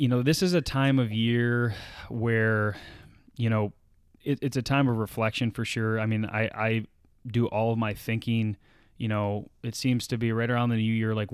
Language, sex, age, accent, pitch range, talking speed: English, male, 20-39, American, 105-120 Hz, 210 wpm